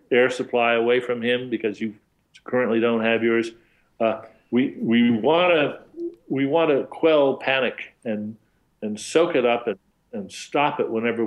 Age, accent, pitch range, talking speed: 50-69, American, 110-140 Hz, 155 wpm